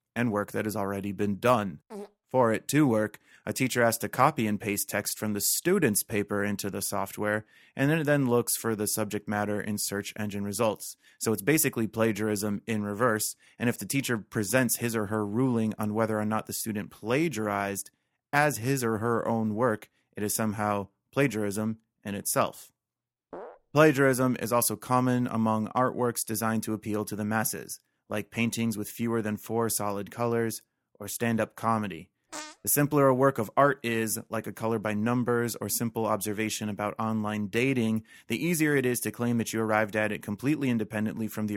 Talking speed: 185 wpm